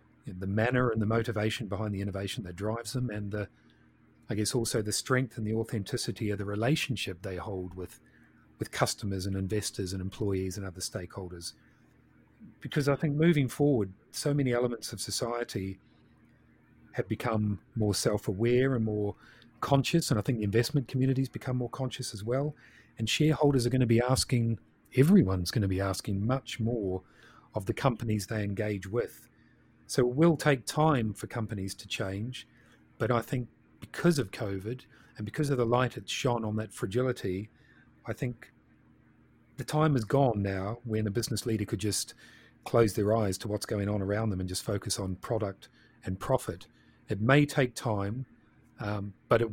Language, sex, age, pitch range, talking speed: English, male, 40-59, 100-125 Hz, 175 wpm